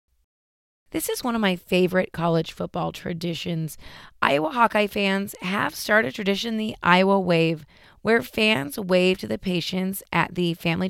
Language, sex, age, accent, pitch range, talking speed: English, female, 30-49, American, 165-200 Hz, 155 wpm